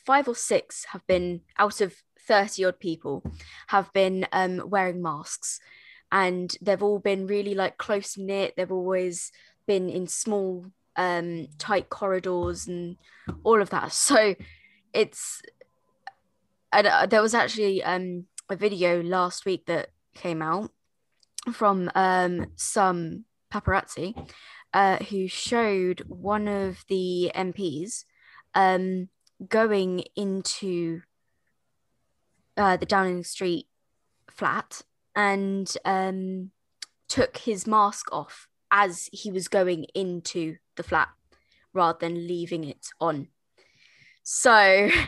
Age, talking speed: 20-39, 115 wpm